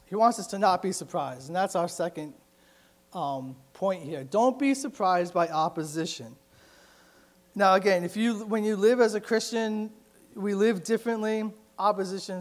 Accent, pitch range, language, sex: American, 175-220 Hz, English, male